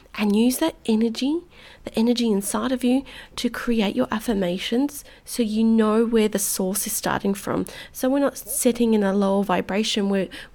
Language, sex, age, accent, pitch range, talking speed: English, female, 30-49, Australian, 205-245 Hz, 180 wpm